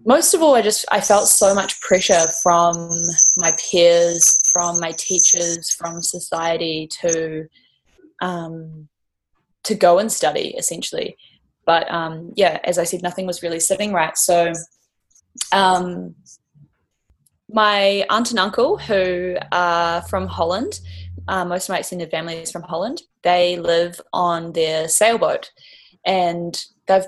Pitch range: 165-190 Hz